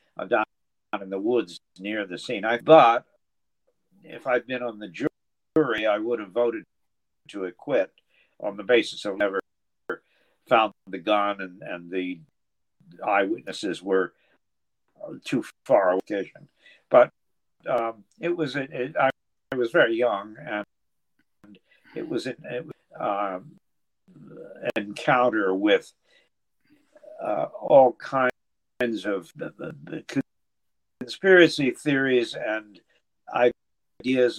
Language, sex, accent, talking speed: English, male, American, 125 wpm